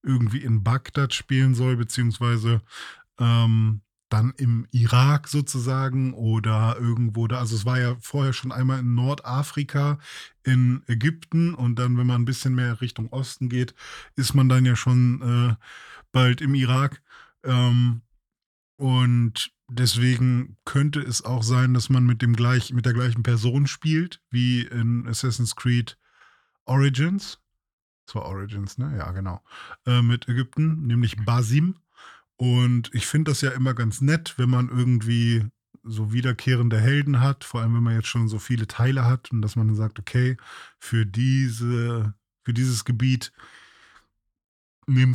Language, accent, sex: German, German, male